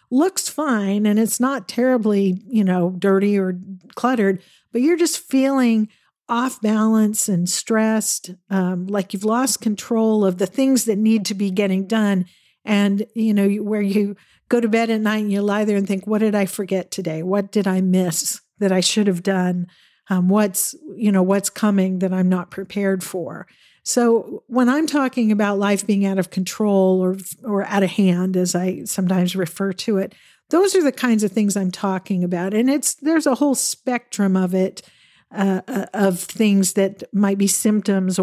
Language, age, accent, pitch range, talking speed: English, 50-69, American, 190-225 Hz, 185 wpm